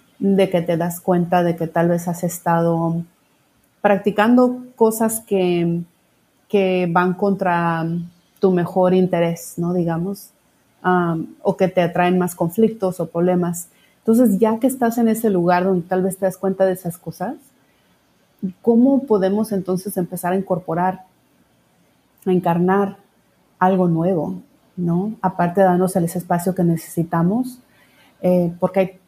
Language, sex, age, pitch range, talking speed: Spanish, female, 30-49, 175-200 Hz, 140 wpm